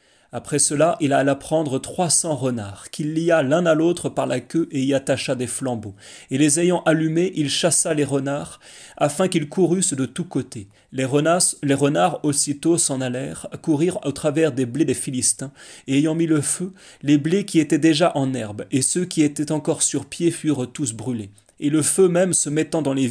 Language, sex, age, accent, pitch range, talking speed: French, male, 30-49, French, 125-155 Hz, 205 wpm